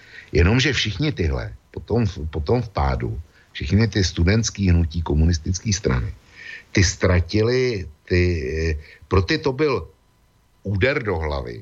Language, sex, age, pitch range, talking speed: Slovak, male, 60-79, 80-105 Hz, 120 wpm